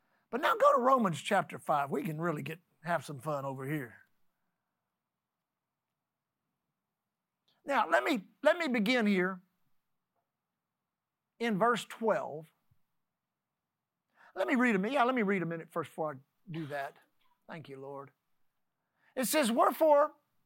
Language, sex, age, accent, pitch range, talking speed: English, male, 50-69, American, 195-255 Hz, 140 wpm